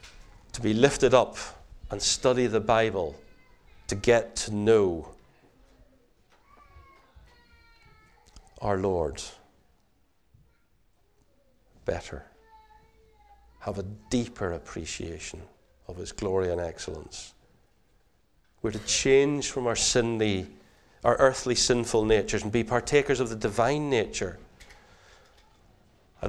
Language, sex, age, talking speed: English, male, 40-59, 95 wpm